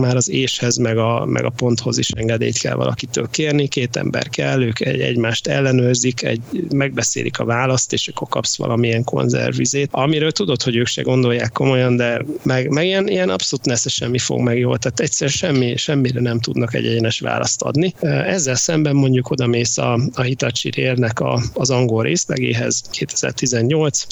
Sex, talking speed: male, 175 wpm